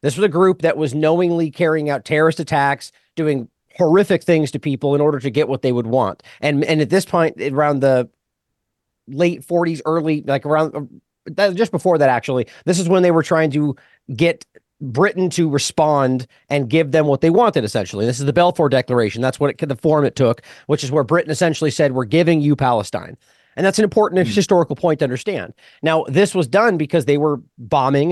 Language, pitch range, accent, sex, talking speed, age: English, 130-165 Hz, American, male, 205 wpm, 30-49